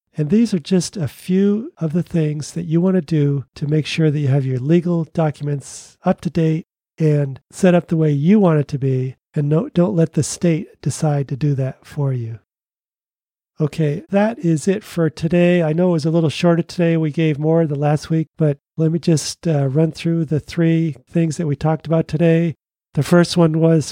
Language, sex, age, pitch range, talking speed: English, male, 40-59, 150-170 Hz, 215 wpm